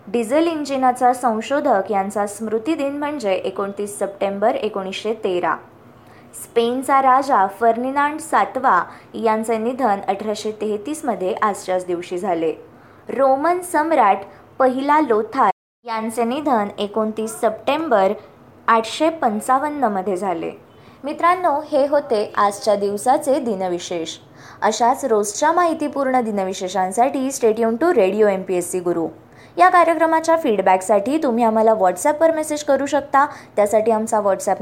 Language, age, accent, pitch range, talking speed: Marathi, 20-39, native, 195-275 Hz, 105 wpm